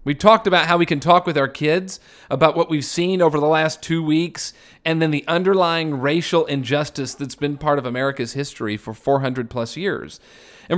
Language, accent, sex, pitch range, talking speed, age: English, American, male, 125-165 Hz, 200 wpm, 40-59